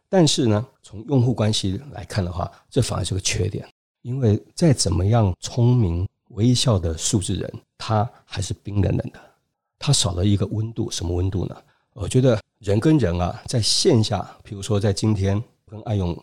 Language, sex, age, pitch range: Chinese, male, 50-69, 100-135 Hz